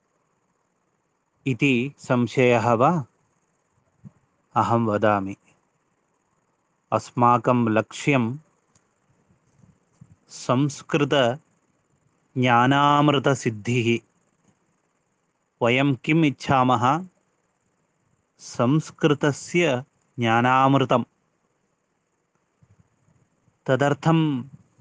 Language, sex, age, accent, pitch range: Malayalam, male, 30-49, native, 120-145 Hz